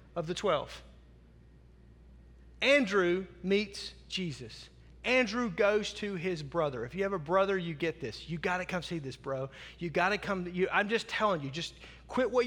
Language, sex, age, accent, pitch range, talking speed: English, male, 30-49, American, 180-230 Hz, 190 wpm